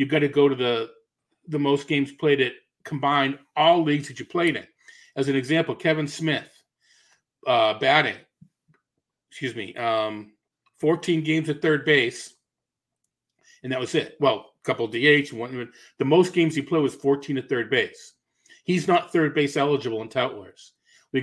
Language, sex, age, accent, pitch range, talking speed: English, male, 40-59, American, 130-155 Hz, 170 wpm